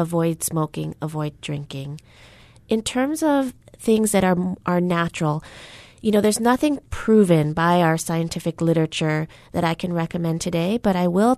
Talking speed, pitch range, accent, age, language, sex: 155 wpm, 170-205 Hz, American, 30-49, English, female